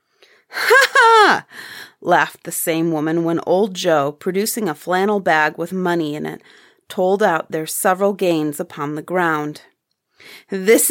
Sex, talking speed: female, 140 wpm